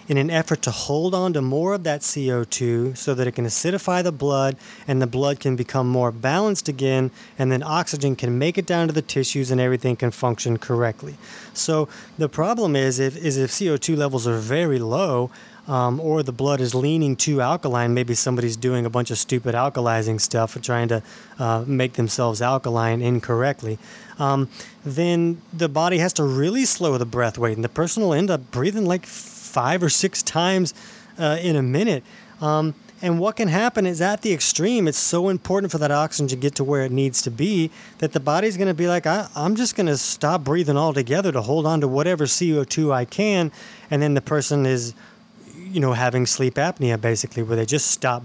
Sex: male